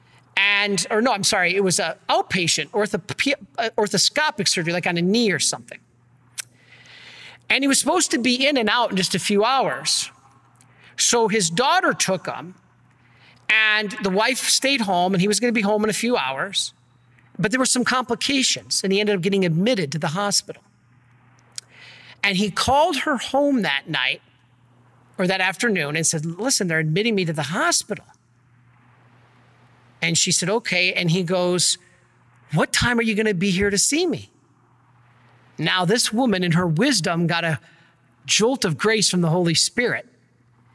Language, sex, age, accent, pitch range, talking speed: English, male, 40-59, American, 155-215 Hz, 175 wpm